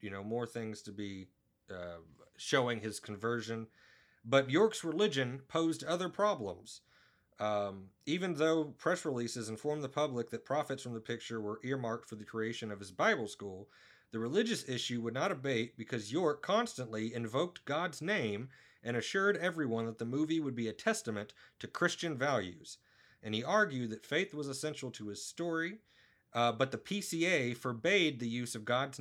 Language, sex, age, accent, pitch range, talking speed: English, male, 30-49, American, 110-150 Hz, 170 wpm